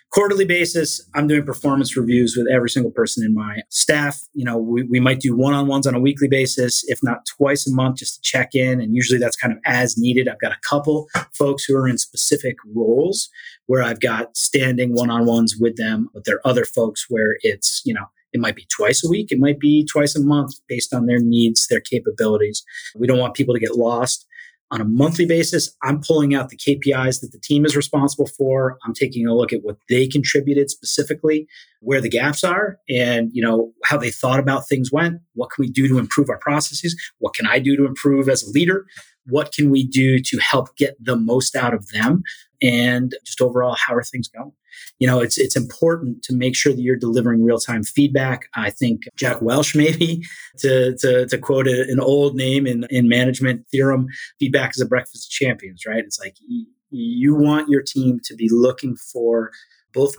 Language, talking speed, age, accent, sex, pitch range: English, 210 wpm, 30-49, American, male, 120-145 Hz